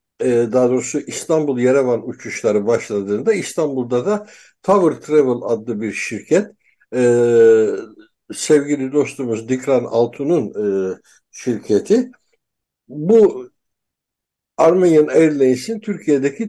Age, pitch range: 60-79, 125-190 Hz